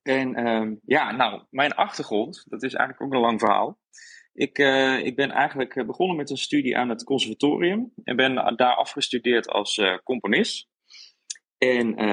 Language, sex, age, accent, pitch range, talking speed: Dutch, male, 20-39, Dutch, 110-135 Hz, 160 wpm